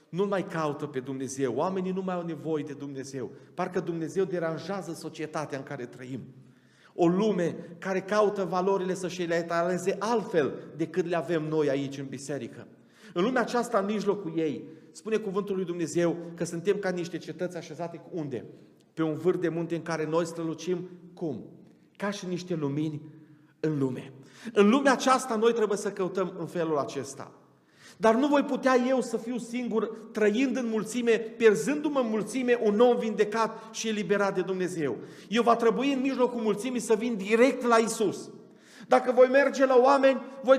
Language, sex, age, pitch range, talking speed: Romanian, male, 40-59, 170-255 Hz, 175 wpm